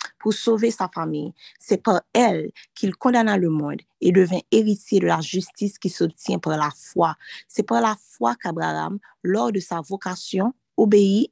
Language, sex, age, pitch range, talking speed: French, female, 20-39, 170-215 Hz, 175 wpm